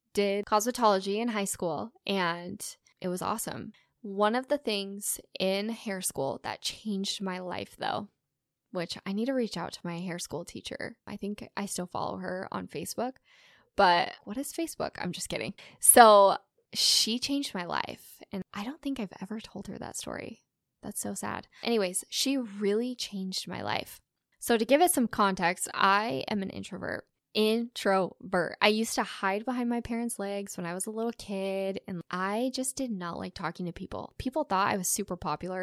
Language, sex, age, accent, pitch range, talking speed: English, female, 10-29, American, 195-240 Hz, 185 wpm